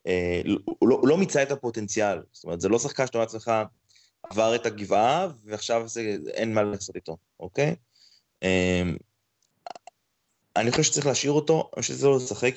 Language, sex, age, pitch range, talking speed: Hebrew, male, 20-39, 105-140 Hz, 175 wpm